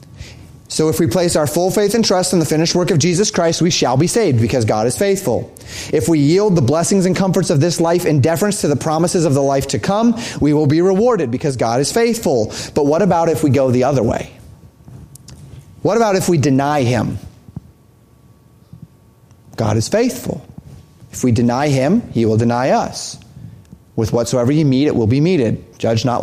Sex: male